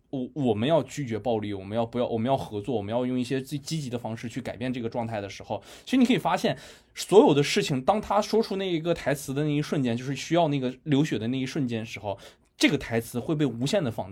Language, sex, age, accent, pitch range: Chinese, male, 20-39, native, 120-165 Hz